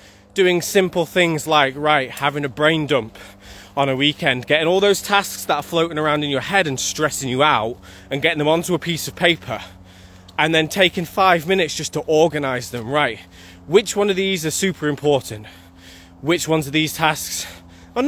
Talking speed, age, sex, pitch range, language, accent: 195 wpm, 20-39, male, 125-165 Hz, English, British